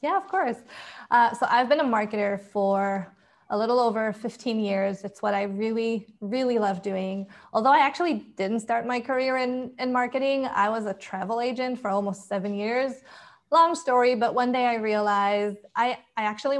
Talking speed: 185 wpm